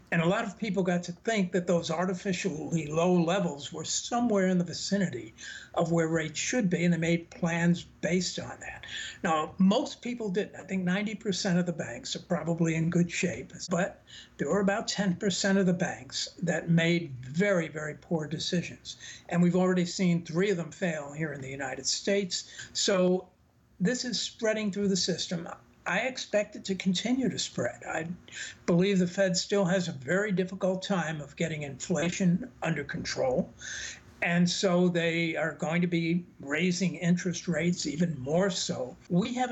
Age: 60-79